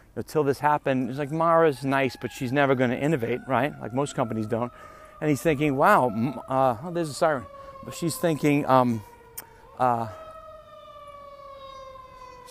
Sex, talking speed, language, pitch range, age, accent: male, 150 wpm, English, 125-170 Hz, 40-59, American